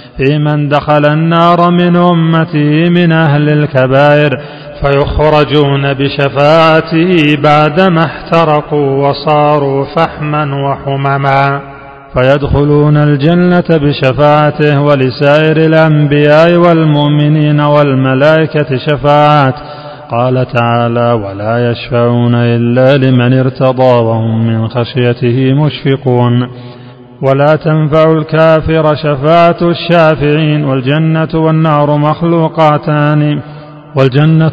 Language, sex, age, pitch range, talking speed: Arabic, male, 30-49, 125-150 Hz, 75 wpm